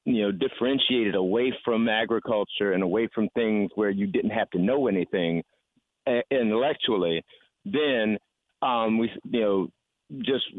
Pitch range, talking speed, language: 100-135 Hz, 140 wpm, English